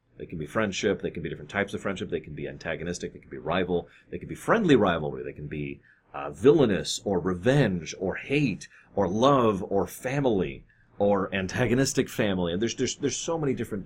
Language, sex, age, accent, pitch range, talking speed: English, male, 30-49, American, 90-125 Hz, 205 wpm